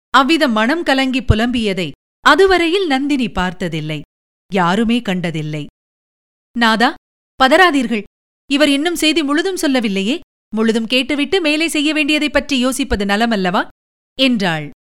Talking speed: 100 wpm